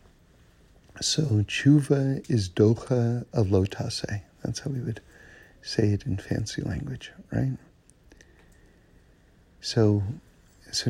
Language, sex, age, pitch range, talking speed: English, male, 50-69, 95-130 Hz, 100 wpm